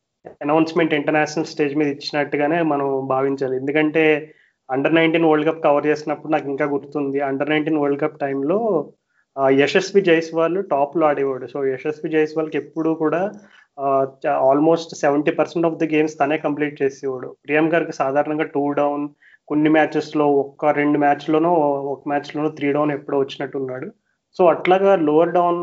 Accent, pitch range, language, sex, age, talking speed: native, 140-160 Hz, Telugu, male, 30-49, 145 wpm